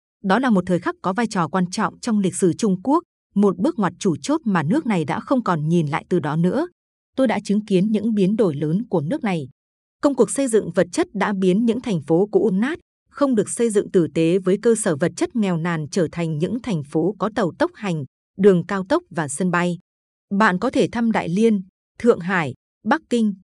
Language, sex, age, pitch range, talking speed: Vietnamese, female, 20-39, 180-225 Hz, 235 wpm